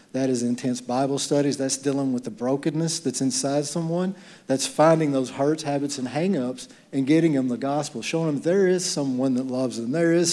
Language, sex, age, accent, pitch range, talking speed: English, male, 40-59, American, 130-155 Hz, 205 wpm